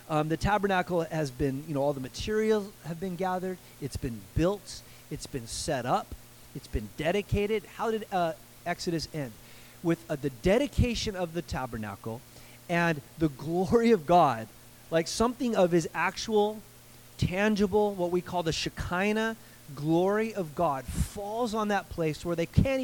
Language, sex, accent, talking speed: English, male, American, 160 wpm